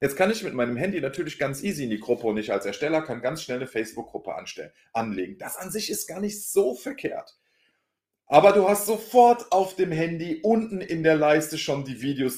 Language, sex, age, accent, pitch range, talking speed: German, male, 40-59, German, 125-165 Hz, 215 wpm